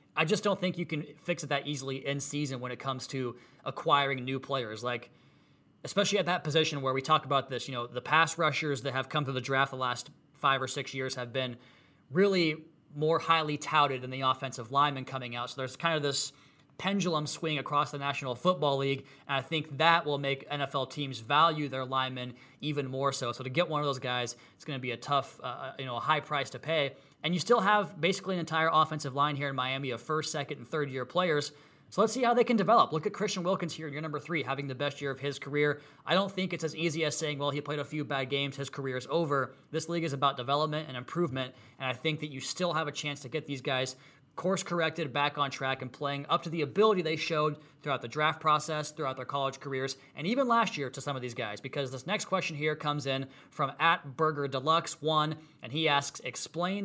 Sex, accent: male, American